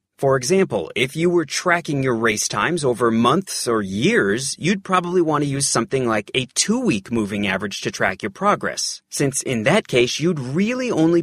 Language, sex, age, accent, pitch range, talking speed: English, male, 30-49, American, 120-190 Hz, 185 wpm